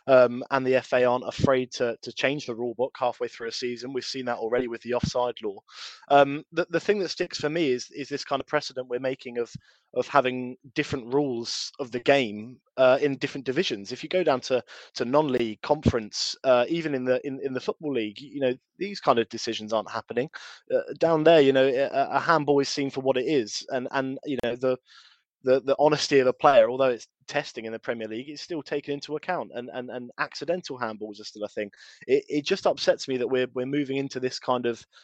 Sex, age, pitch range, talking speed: male, 20-39, 120-145 Hz, 235 wpm